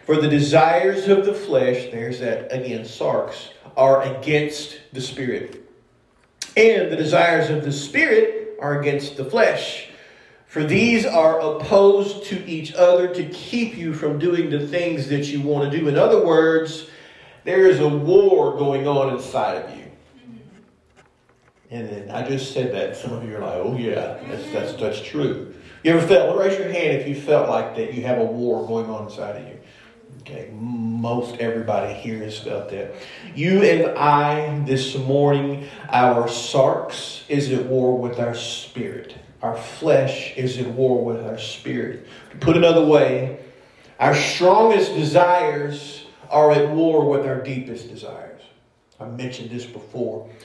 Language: English